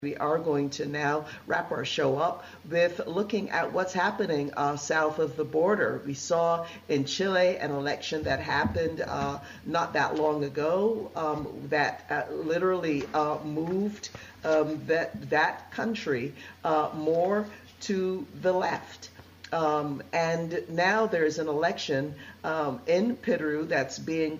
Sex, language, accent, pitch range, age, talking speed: female, English, American, 145-170 Hz, 50-69, 145 wpm